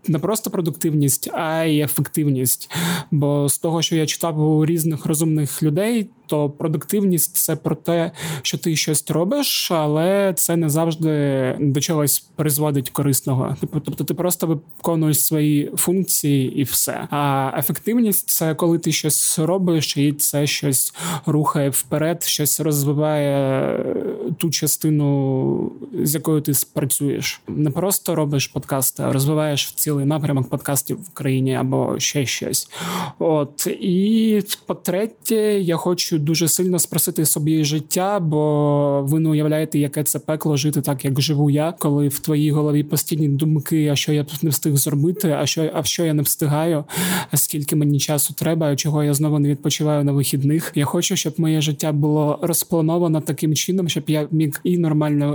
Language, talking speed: Ukrainian, 160 wpm